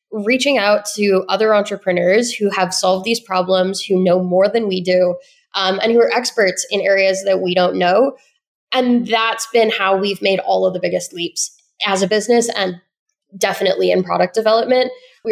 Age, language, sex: 10-29, English, female